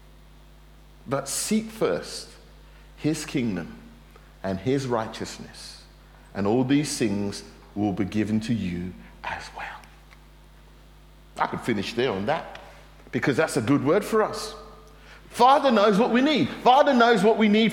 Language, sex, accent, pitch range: English, male, British, 140-190 Hz